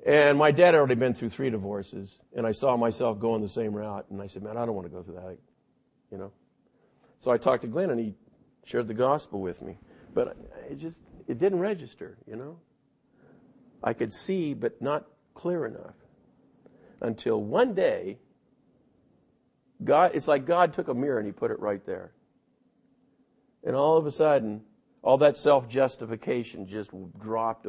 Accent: American